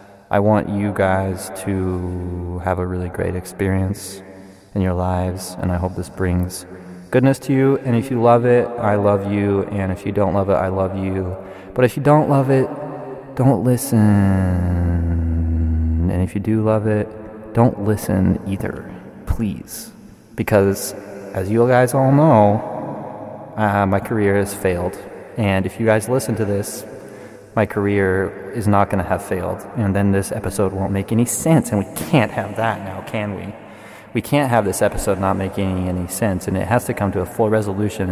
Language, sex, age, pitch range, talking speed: English, male, 20-39, 95-110 Hz, 185 wpm